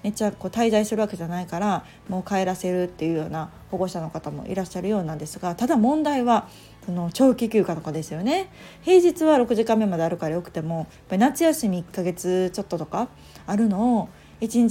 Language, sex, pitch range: Japanese, female, 175-225 Hz